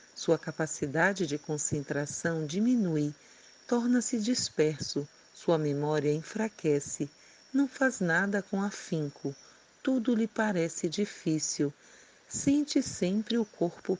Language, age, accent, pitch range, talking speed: Portuguese, 50-69, Brazilian, 150-215 Hz, 100 wpm